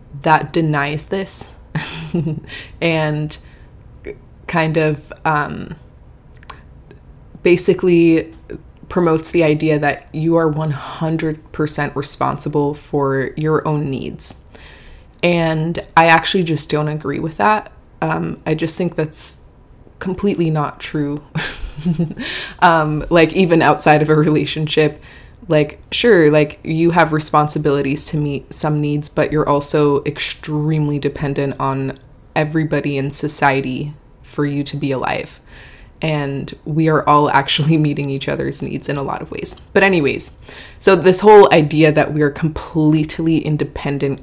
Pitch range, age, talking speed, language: 145-160 Hz, 20-39, 125 wpm, English